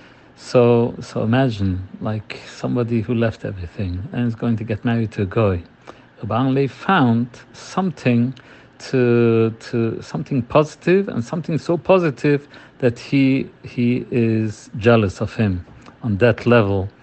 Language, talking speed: English, 135 wpm